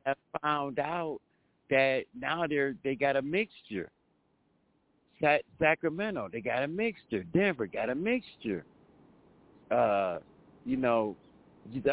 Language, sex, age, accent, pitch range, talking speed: English, male, 60-79, American, 125-150 Hz, 110 wpm